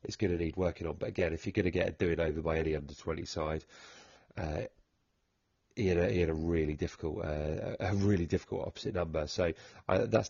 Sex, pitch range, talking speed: male, 80-95 Hz, 215 wpm